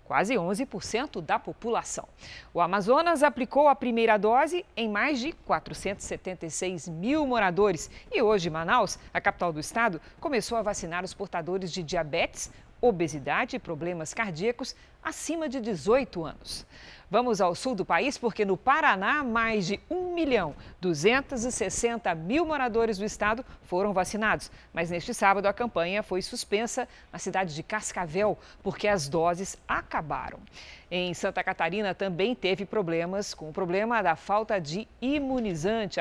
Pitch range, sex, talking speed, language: 180-240 Hz, female, 140 wpm, Portuguese